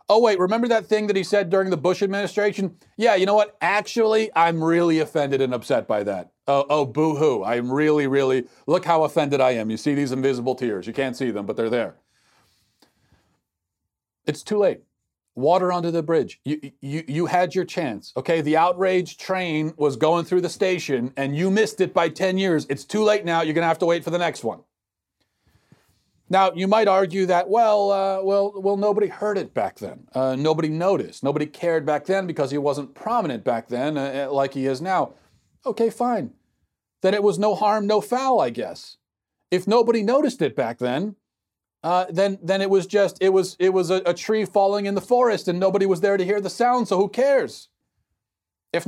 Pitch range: 150-205 Hz